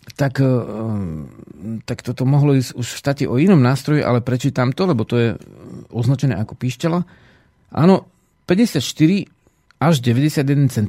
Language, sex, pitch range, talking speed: Slovak, male, 110-135 Hz, 130 wpm